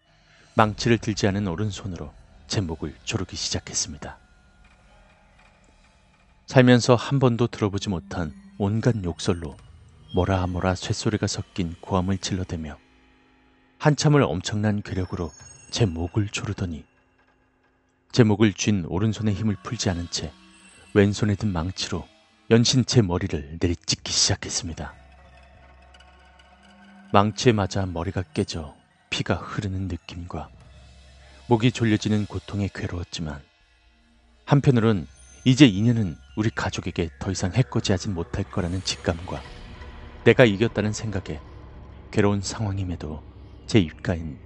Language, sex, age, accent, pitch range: Korean, male, 30-49, native, 85-105 Hz